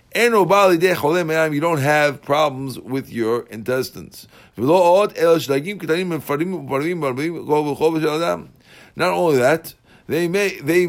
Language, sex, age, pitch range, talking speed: English, male, 50-69, 130-170 Hz, 70 wpm